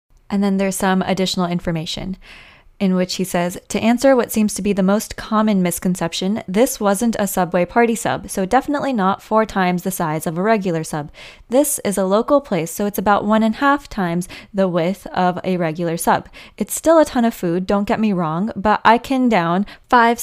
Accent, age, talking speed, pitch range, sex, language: American, 20-39, 210 wpm, 185-220 Hz, female, English